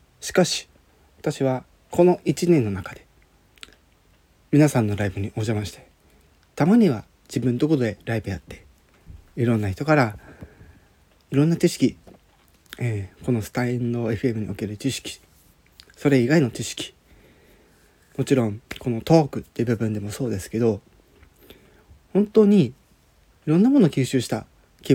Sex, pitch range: male, 105-155 Hz